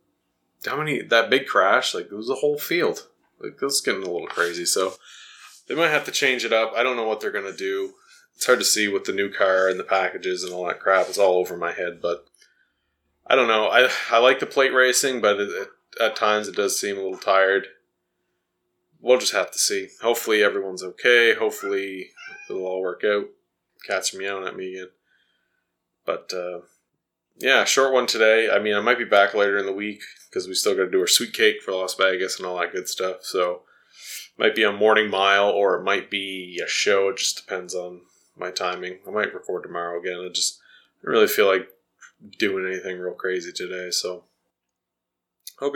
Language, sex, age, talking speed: English, male, 20-39, 215 wpm